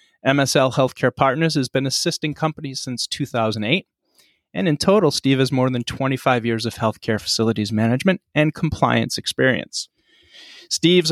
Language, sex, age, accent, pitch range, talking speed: English, male, 30-49, American, 115-150 Hz, 140 wpm